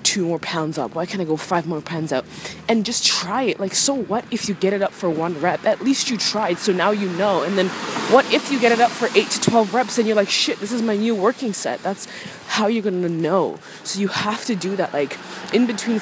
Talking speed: 275 wpm